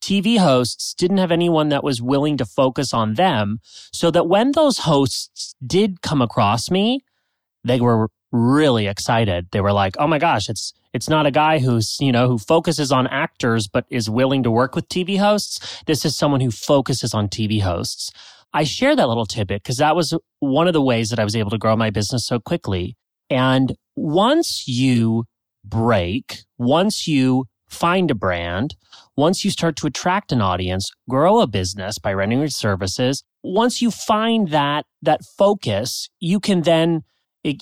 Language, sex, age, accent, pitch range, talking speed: English, male, 30-49, American, 115-165 Hz, 180 wpm